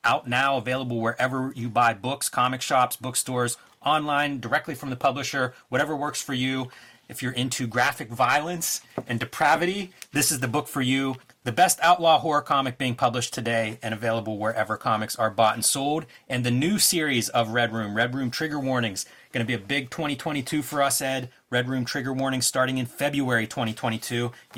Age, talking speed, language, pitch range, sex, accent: 30-49, 185 wpm, English, 120-150 Hz, male, American